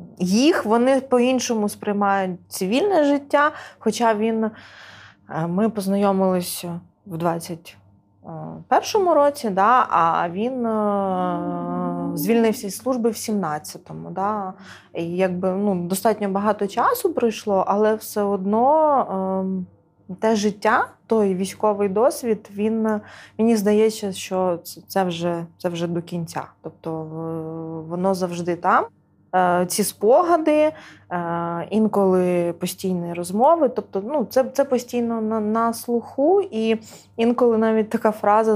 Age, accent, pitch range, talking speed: 20-39, native, 180-230 Hz, 110 wpm